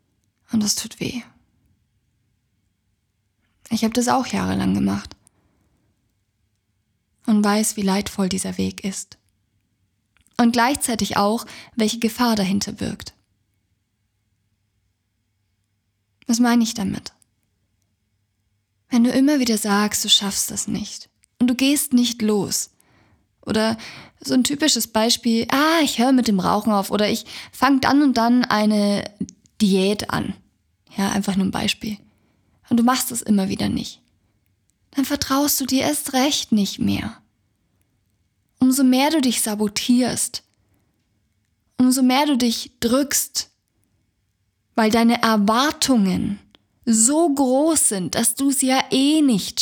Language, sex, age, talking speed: German, female, 20-39, 125 wpm